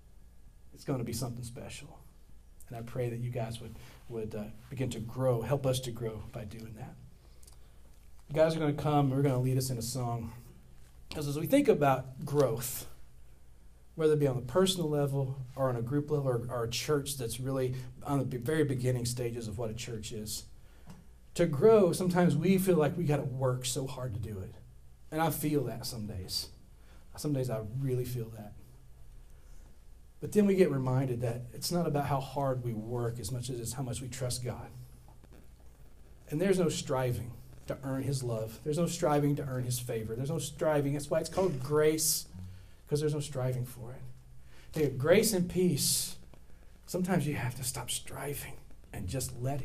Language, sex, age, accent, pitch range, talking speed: English, male, 40-59, American, 110-145 Hz, 195 wpm